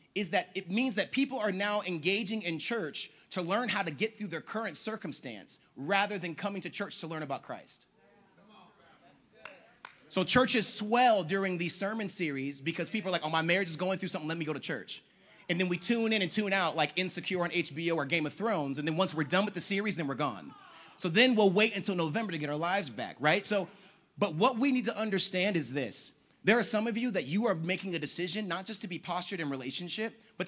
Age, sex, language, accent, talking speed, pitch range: 30-49, male, English, American, 235 wpm, 170-220 Hz